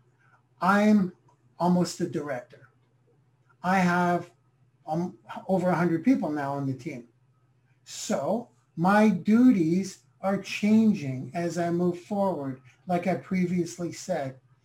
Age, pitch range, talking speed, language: 60-79, 135-205 Hz, 110 wpm, English